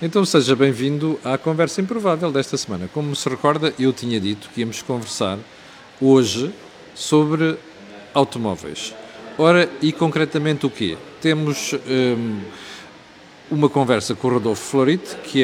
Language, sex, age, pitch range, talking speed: Portuguese, male, 50-69, 120-165 Hz, 130 wpm